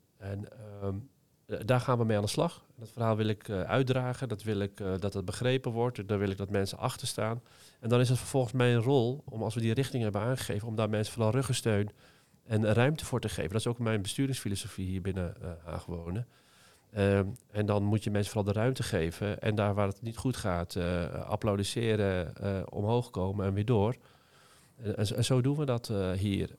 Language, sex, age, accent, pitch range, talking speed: Dutch, male, 40-59, Dutch, 100-120 Hz, 215 wpm